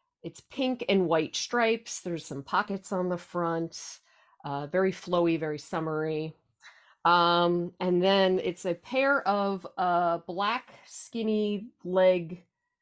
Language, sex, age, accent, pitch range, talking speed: English, female, 40-59, American, 165-210 Hz, 125 wpm